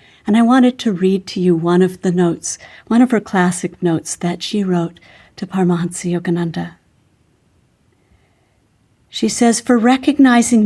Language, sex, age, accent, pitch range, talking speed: English, female, 50-69, American, 180-215 Hz, 145 wpm